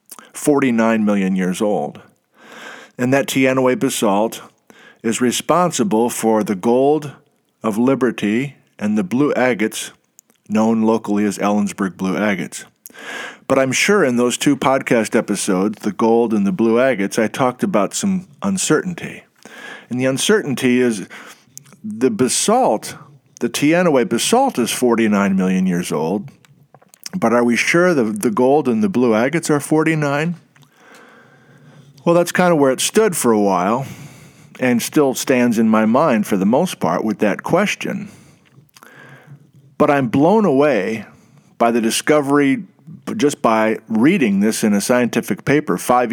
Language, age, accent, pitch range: English, 50-69, American, 115-150 Hz